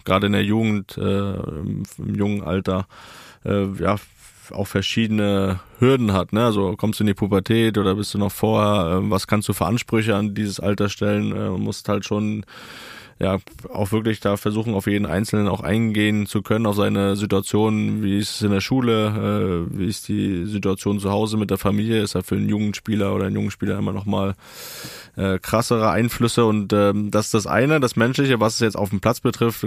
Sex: male